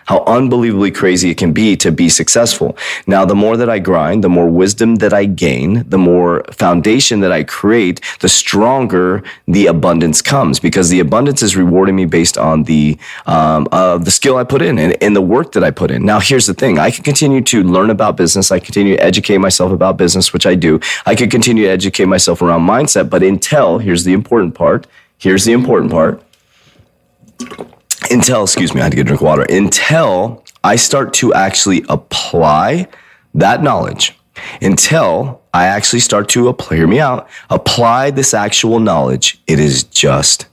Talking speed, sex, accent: 190 wpm, male, American